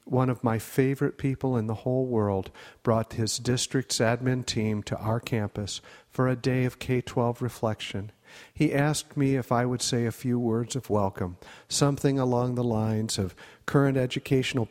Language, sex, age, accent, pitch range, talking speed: English, male, 50-69, American, 115-140 Hz, 170 wpm